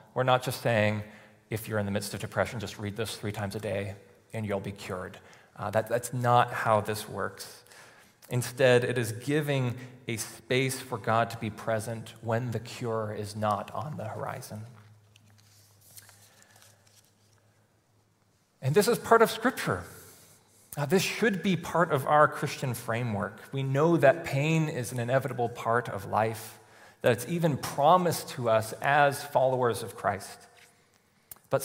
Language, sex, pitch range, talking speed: English, male, 110-135 Hz, 155 wpm